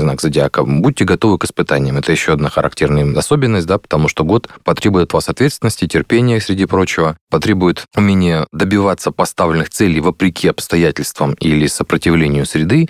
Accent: native